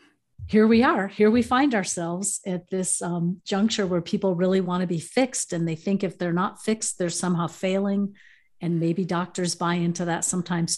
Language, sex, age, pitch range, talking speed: English, female, 50-69, 175-205 Hz, 195 wpm